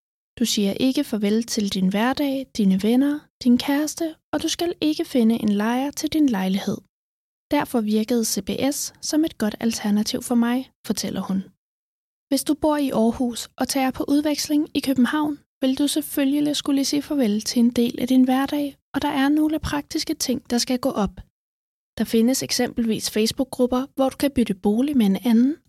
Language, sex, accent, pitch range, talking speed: Danish, female, native, 225-295 Hz, 180 wpm